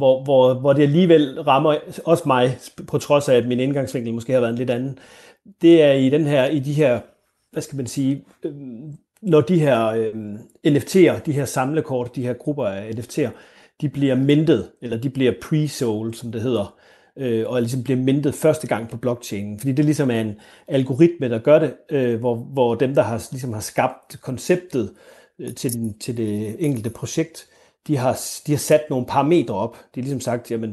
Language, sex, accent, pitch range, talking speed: Danish, male, native, 115-150 Hz, 180 wpm